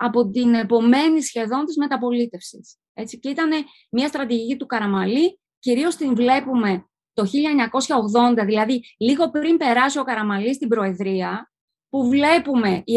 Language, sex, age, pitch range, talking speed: Greek, female, 20-39, 225-300 Hz, 135 wpm